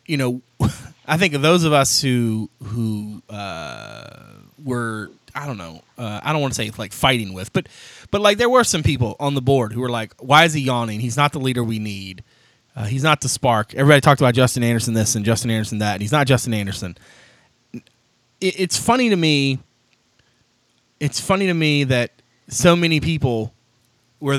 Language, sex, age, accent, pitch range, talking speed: English, male, 30-49, American, 120-155 Hz, 200 wpm